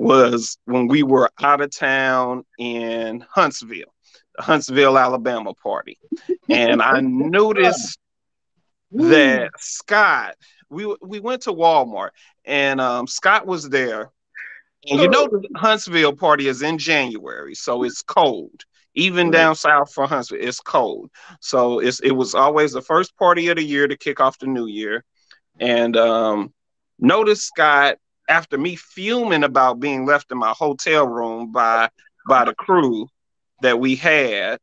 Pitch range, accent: 135-175 Hz, American